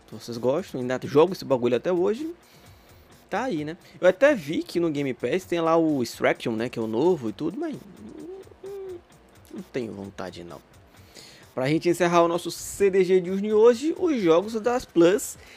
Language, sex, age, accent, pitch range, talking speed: Portuguese, male, 20-39, Brazilian, 120-190 Hz, 175 wpm